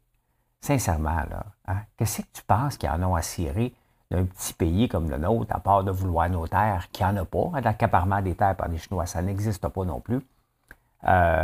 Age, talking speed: 50-69, 215 wpm